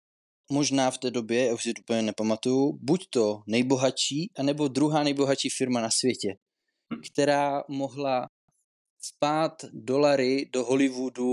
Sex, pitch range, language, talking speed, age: male, 110-140 Hz, Czech, 130 wpm, 20-39